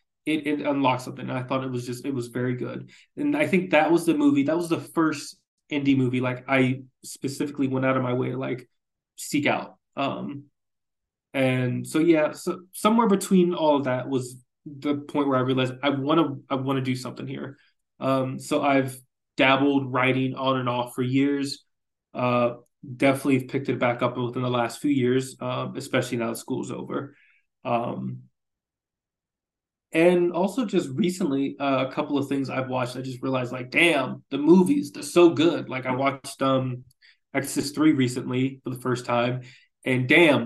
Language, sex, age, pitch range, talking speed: English, male, 20-39, 125-150 Hz, 185 wpm